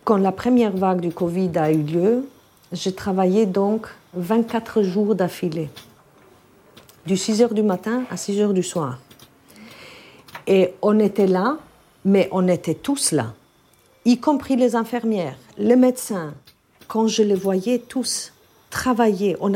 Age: 50-69